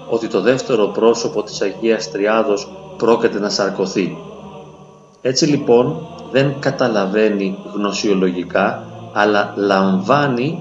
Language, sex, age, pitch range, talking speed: Greek, male, 40-59, 105-150 Hz, 95 wpm